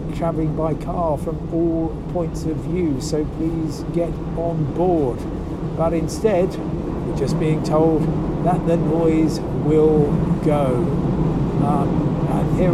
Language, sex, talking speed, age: English, male, 125 wpm, 50-69